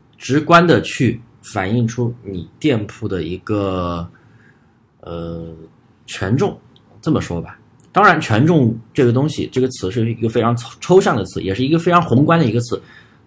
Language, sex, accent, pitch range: Chinese, male, native, 105-130 Hz